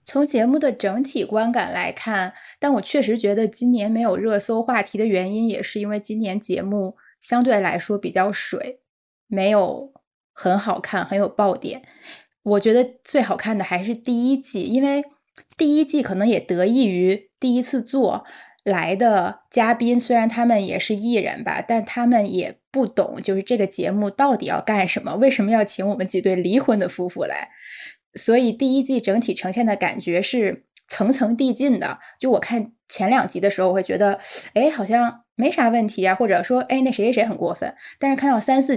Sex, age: female, 10-29